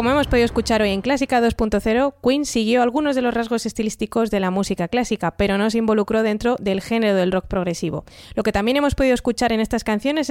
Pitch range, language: 205-255 Hz, Spanish